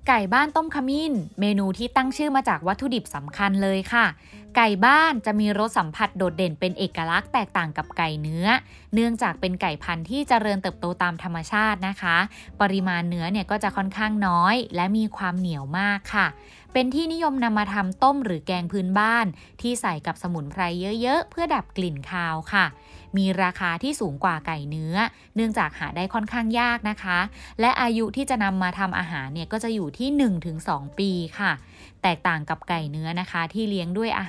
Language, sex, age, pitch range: Thai, female, 20-39, 175-230 Hz